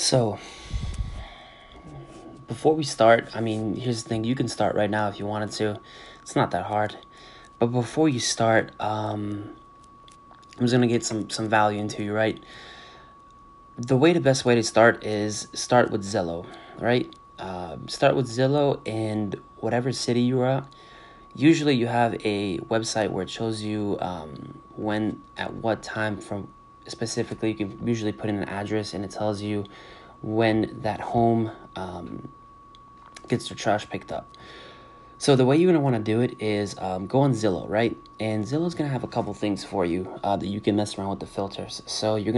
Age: 20-39